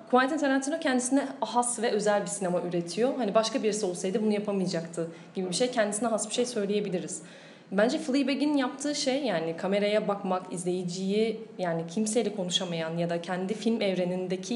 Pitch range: 185-235 Hz